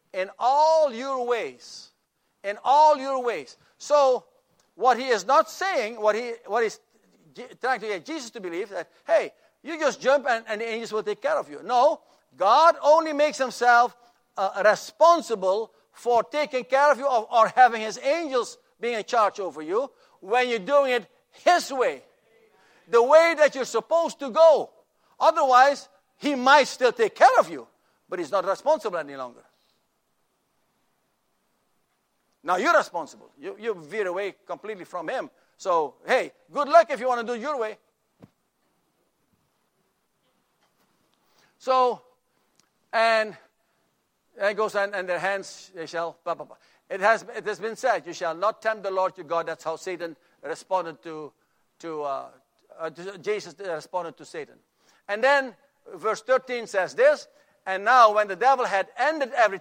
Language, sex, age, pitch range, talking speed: English, male, 60-79, 195-285 Hz, 165 wpm